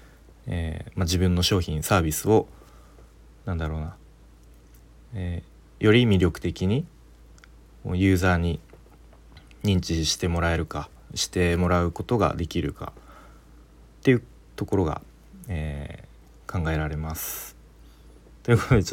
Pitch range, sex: 75-100 Hz, male